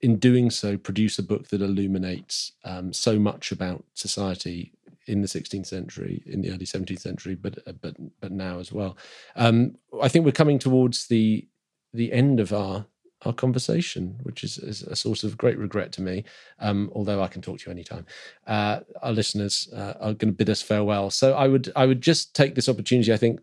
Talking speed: 205 wpm